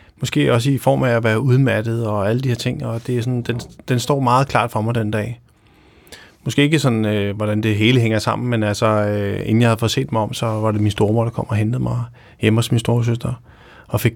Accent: native